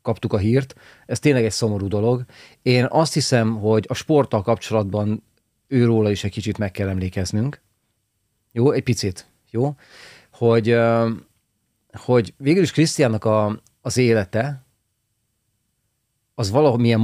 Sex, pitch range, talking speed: male, 100-125 Hz, 125 wpm